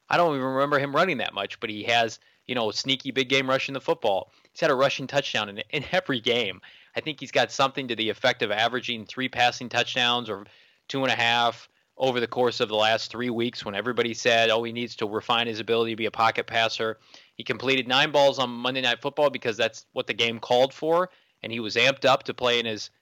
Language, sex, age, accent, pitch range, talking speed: English, male, 20-39, American, 115-130 Hz, 245 wpm